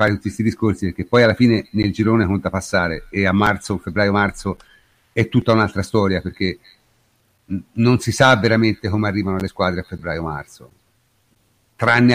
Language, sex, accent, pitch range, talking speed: Italian, male, native, 100-120 Hz, 170 wpm